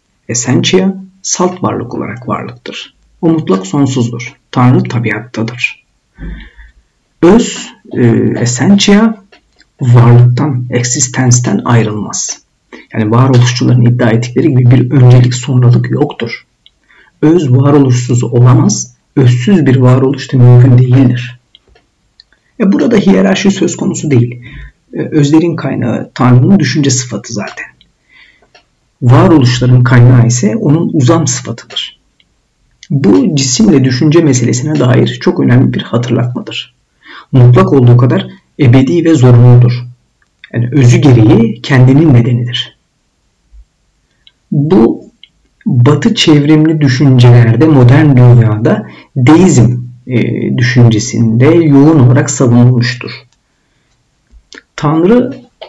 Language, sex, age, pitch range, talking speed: Turkish, male, 50-69, 120-145 Hz, 90 wpm